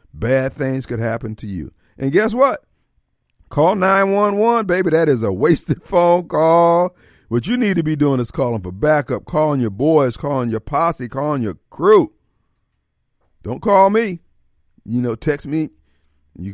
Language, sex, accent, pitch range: Japanese, male, American, 110-175 Hz